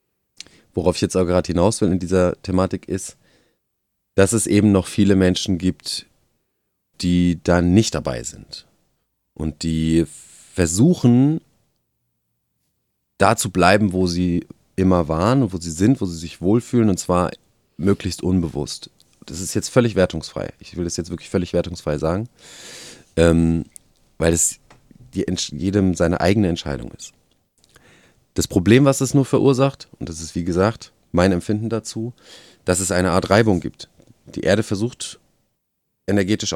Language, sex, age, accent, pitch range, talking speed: German, male, 30-49, German, 90-110 Hz, 145 wpm